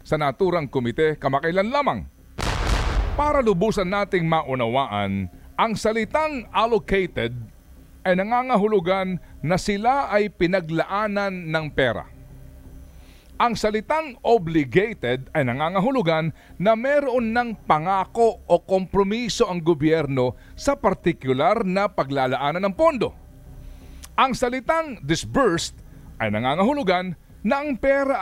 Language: Filipino